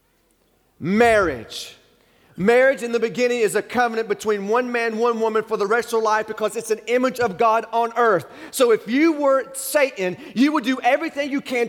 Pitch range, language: 215-270 Hz, English